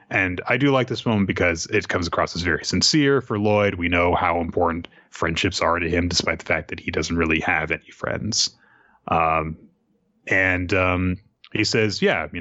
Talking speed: 195 wpm